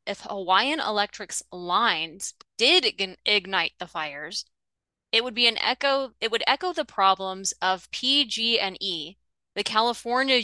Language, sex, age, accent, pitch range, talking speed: English, female, 20-39, American, 185-225 Hz, 125 wpm